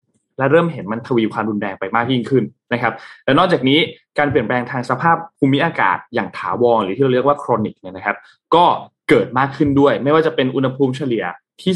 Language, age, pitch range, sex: Thai, 20-39, 120-175 Hz, male